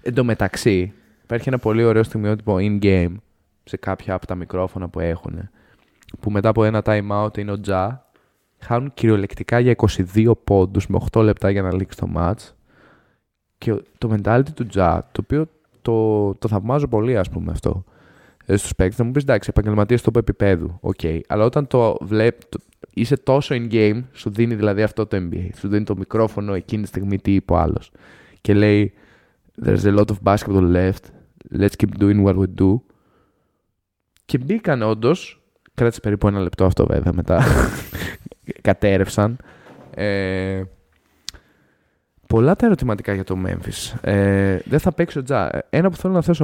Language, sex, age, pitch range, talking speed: Greek, male, 20-39, 95-120 Hz, 165 wpm